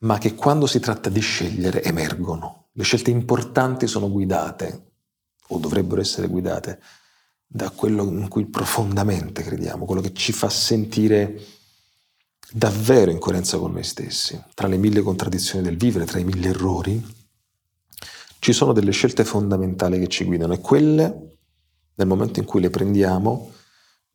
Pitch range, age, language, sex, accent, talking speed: 90-110 Hz, 40-59, Italian, male, native, 150 wpm